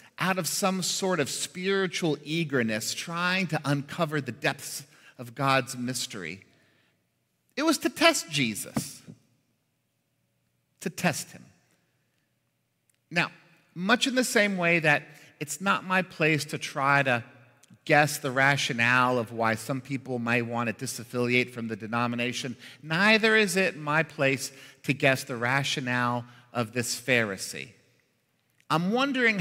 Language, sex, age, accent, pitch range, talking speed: English, male, 50-69, American, 125-185 Hz, 135 wpm